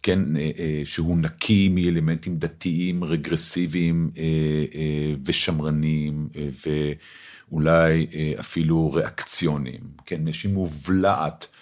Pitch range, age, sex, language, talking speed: 75-100 Hz, 50-69, male, Hebrew, 65 wpm